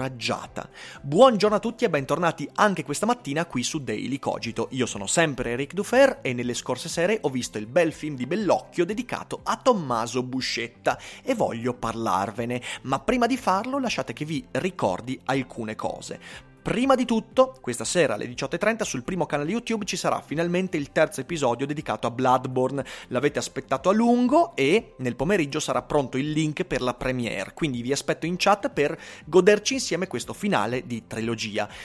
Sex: male